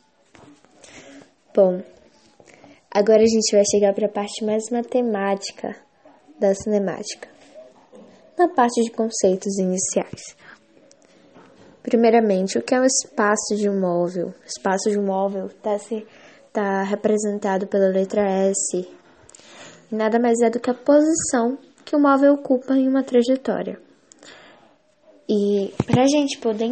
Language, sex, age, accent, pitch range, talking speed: English, female, 10-29, Brazilian, 210-265 Hz, 130 wpm